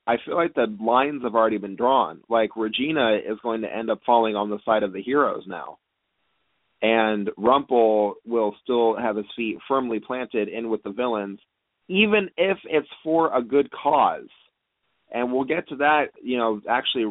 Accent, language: American, English